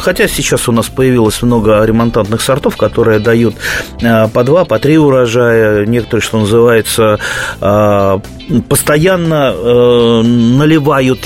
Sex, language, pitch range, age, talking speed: male, Russian, 105-130 Hz, 30-49, 105 wpm